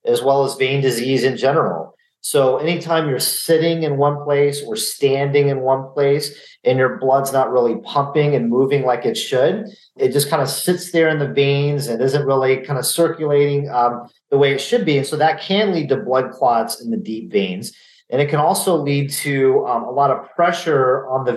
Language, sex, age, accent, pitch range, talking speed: English, male, 40-59, American, 130-155 Hz, 215 wpm